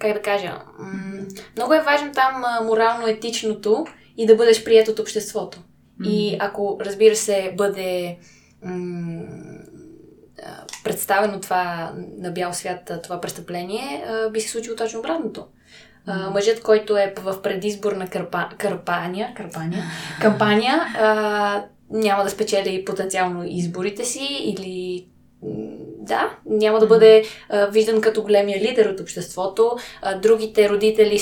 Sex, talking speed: female, 135 wpm